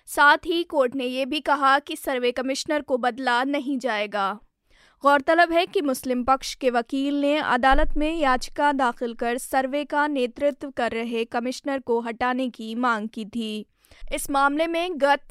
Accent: native